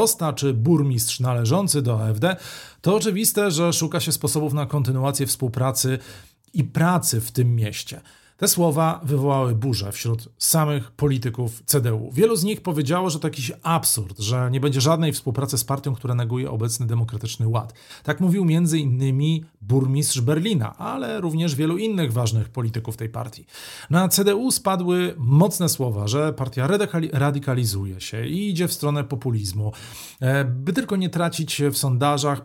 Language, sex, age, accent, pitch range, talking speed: Polish, male, 40-59, native, 120-165 Hz, 150 wpm